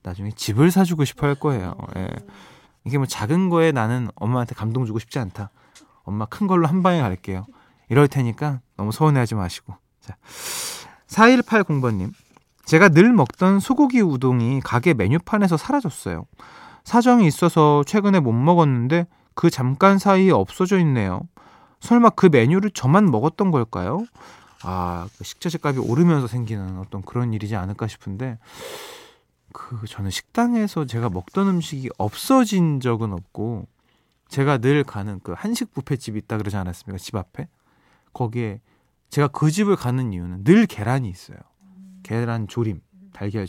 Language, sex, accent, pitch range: Korean, male, native, 110-180 Hz